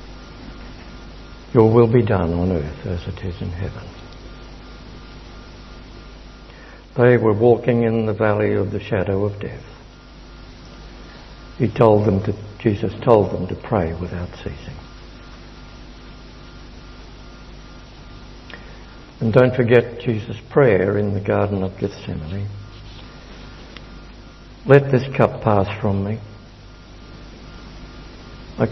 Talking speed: 105 wpm